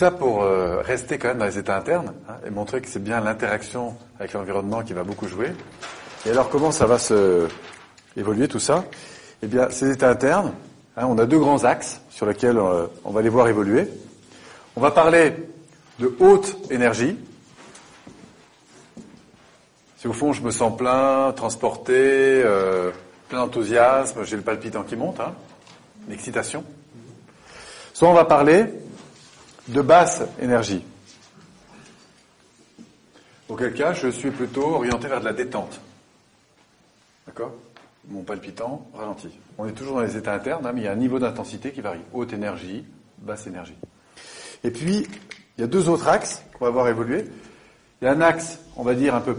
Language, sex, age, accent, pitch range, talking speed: French, male, 40-59, French, 105-145 Hz, 170 wpm